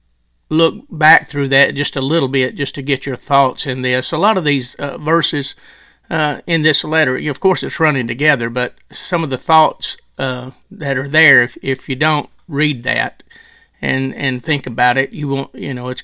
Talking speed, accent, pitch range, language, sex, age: 205 wpm, American, 130-165 Hz, English, male, 40-59